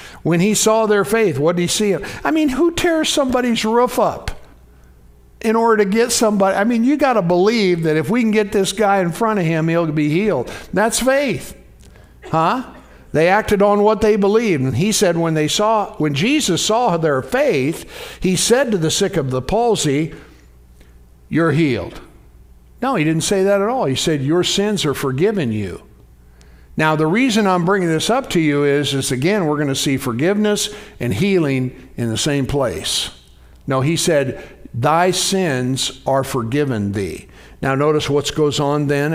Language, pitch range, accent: English, 135-195 Hz, American